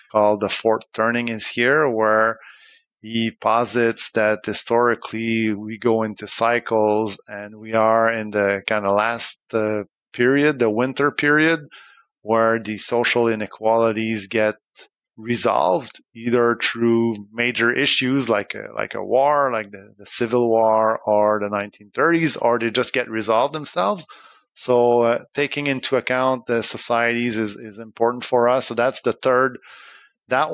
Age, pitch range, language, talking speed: 30-49, 110-125 Hz, English, 145 wpm